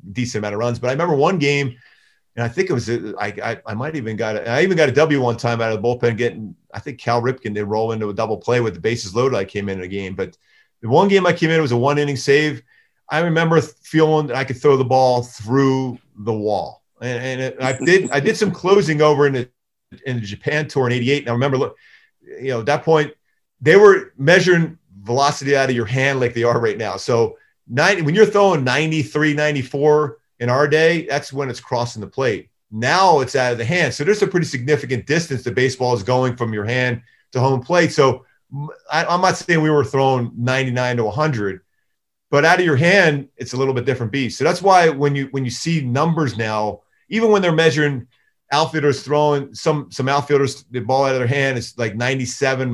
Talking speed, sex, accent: 230 wpm, male, American